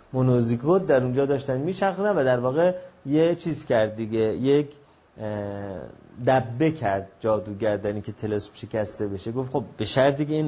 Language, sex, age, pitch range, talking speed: Persian, male, 30-49, 120-155 Hz, 150 wpm